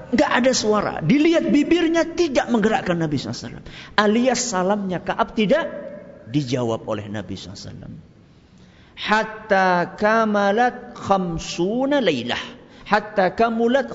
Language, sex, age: Malay, male, 50-69